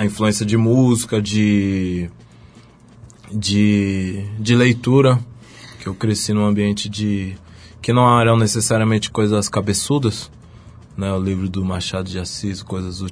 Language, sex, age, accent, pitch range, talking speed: Portuguese, male, 20-39, Brazilian, 100-115 Hz, 135 wpm